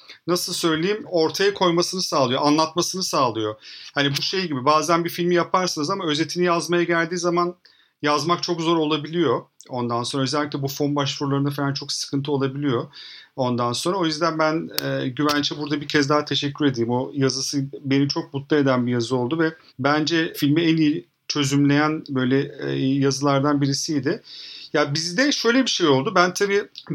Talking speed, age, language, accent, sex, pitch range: 165 wpm, 40-59, Turkish, native, male, 140-175 Hz